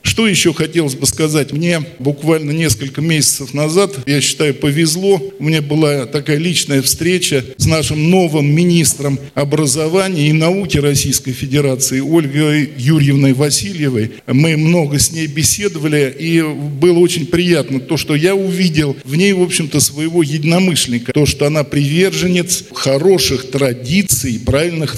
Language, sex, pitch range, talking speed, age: Russian, male, 135-165 Hz, 135 wpm, 50-69